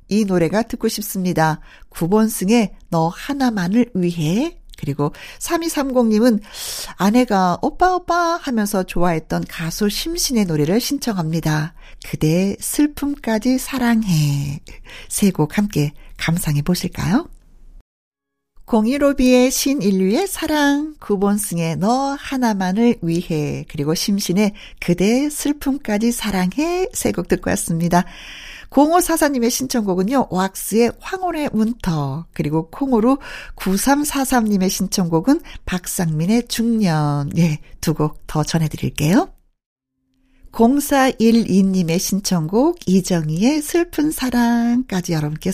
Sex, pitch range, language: female, 175-260 Hz, Korean